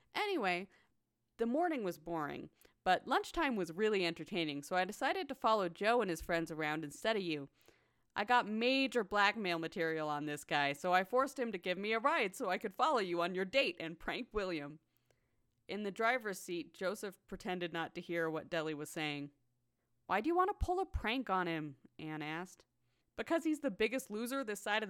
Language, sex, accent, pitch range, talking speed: English, female, American, 160-245 Hz, 200 wpm